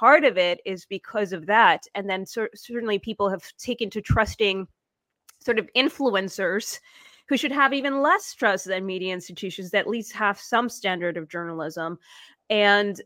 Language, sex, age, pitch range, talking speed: English, female, 20-39, 190-230 Hz, 165 wpm